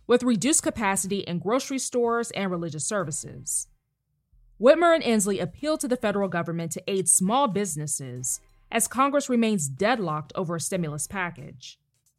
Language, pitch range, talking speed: English, 155-240 Hz, 145 wpm